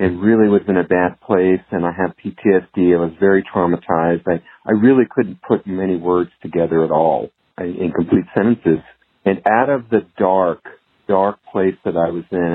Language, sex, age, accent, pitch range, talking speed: English, male, 50-69, American, 90-105 Hz, 185 wpm